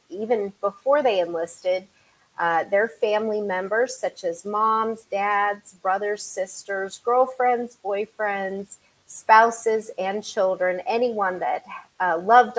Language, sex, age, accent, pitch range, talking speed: English, female, 30-49, American, 180-220 Hz, 110 wpm